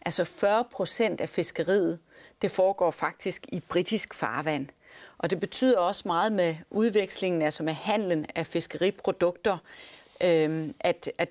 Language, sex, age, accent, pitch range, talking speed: Danish, female, 40-59, native, 170-225 Hz, 125 wpm